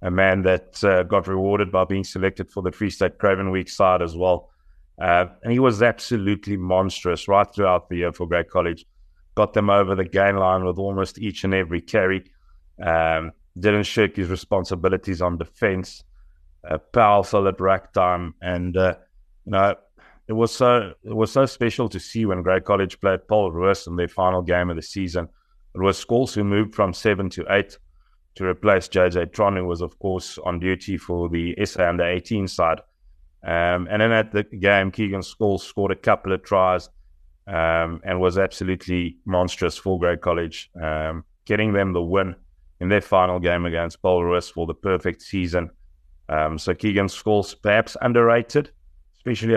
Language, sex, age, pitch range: English, male, 30-49, 85-100 Hz